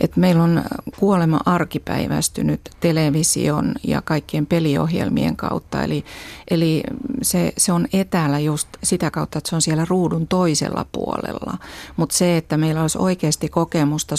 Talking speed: 135 wpm